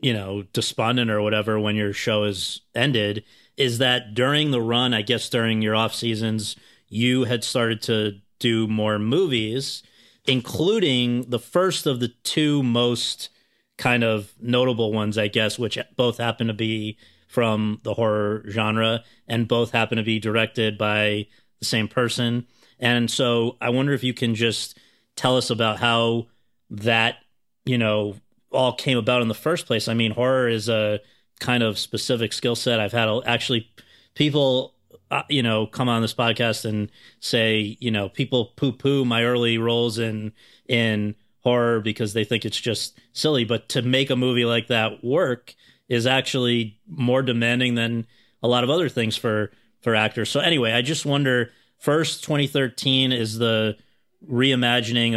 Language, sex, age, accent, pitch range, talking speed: English, male, 30-49, American, 110-125 Hz, 165 wpm